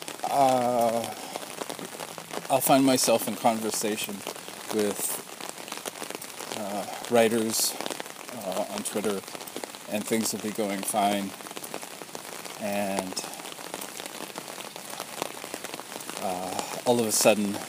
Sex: male